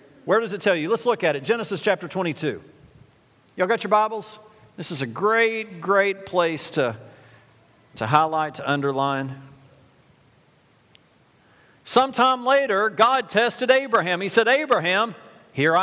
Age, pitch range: 50-69, 135-195 Hz